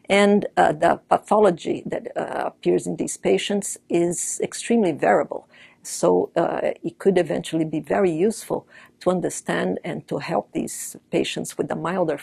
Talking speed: 150 wpm